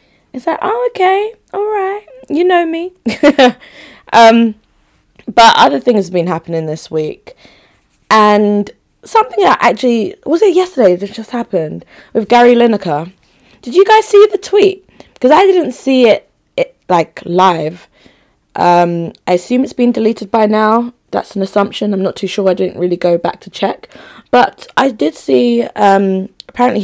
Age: 20-39